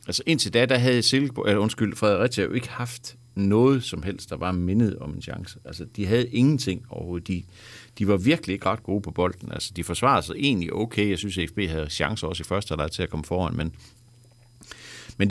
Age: 60-79